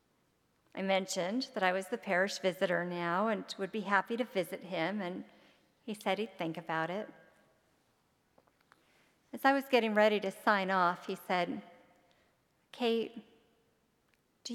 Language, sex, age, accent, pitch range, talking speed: English, female, 40-59, American, 180-225 Hz, 145 wpm